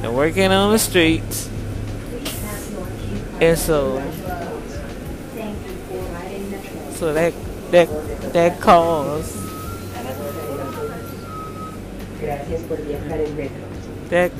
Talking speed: 50 wpm